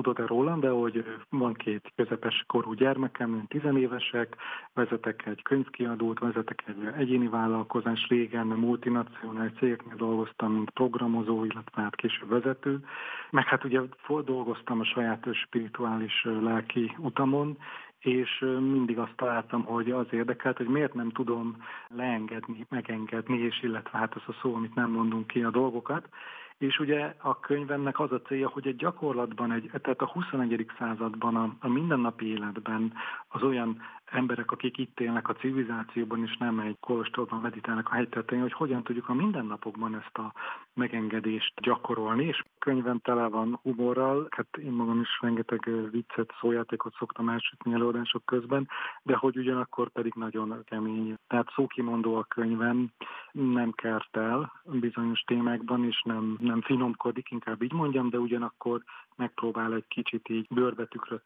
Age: 40-59